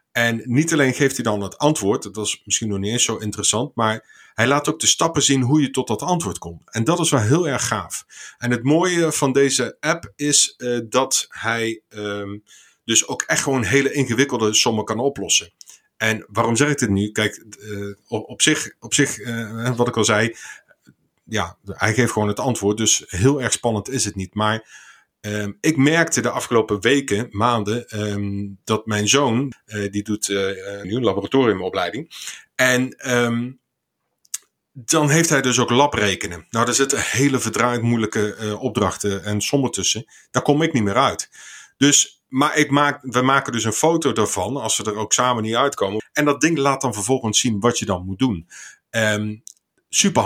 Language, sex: Dutch, male